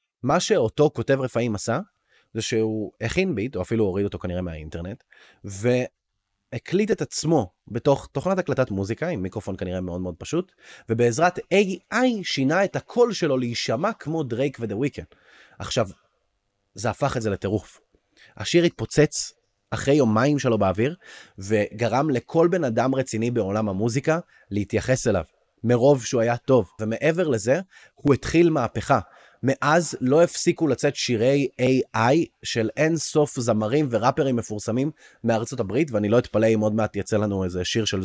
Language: Hebrew